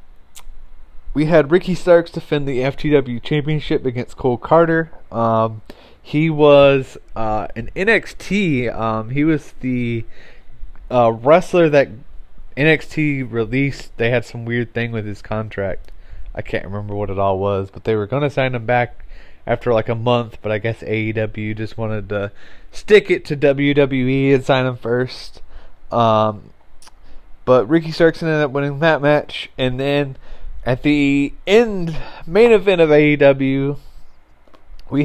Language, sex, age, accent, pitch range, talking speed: English, male, 20-39, American, 110-150 Hz, 150 wpm